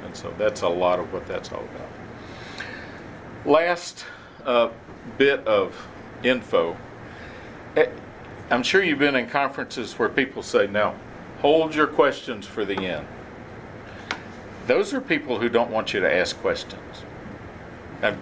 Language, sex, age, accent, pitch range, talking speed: English, male, 50-69, American, 120-175 Hz, 135 wpm